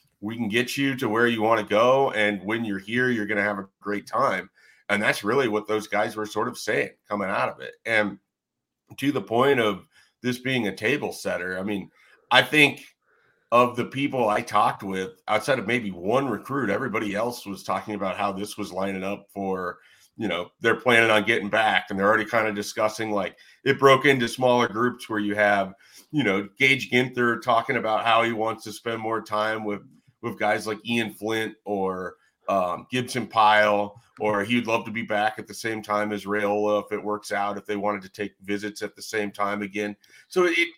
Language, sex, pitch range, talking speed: English, male, 105-125 Hz, 215 wpm